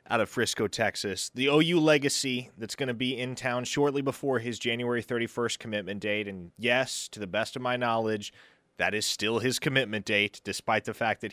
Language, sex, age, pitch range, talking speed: English, male, 30-49, 110-155 Hz, 200 wpm